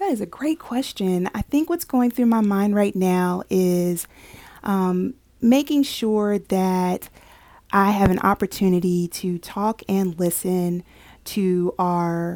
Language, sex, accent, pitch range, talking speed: English, female, American, 180-210 Hz, 140 wpm